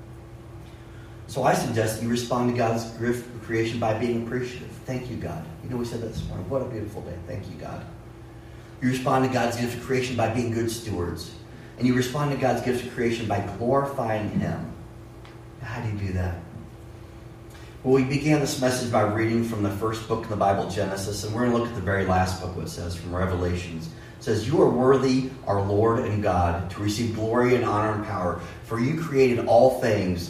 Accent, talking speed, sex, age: American, 210 wpm, male, 30-49